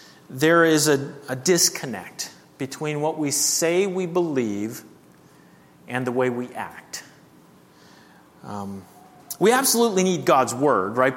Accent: American